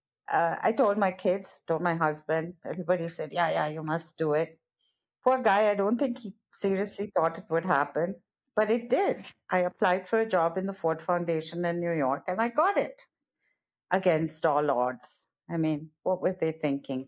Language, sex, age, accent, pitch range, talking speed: English, female, 60-79, Indian, 165-230 Hz, 195 wpm